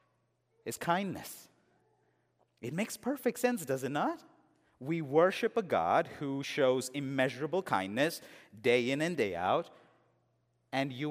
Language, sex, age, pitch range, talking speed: English, male, 30-49, 140-210 Hz, 130 wpm